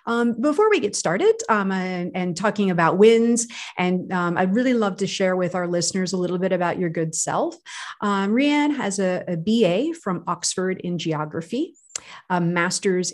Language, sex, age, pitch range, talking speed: English, female, 40-59, 175-215 Hz, 185 wpm